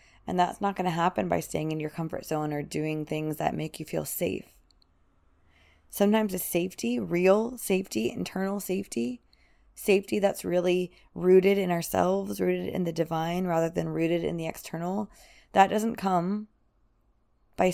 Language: English